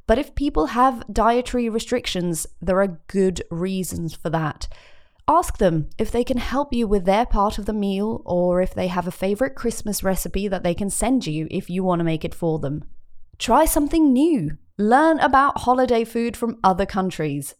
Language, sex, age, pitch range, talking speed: English, female, 20-39, 170-245 Hz, 190 wpm